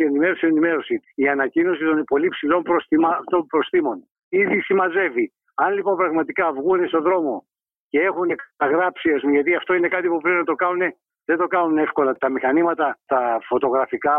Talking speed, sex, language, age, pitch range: 155 wpm, male, Greek, 60-79, 155-245 Hz